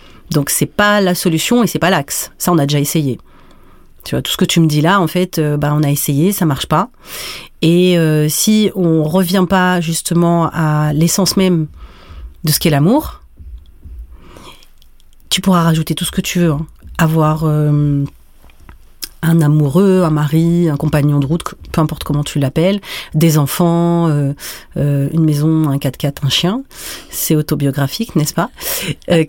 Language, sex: French, female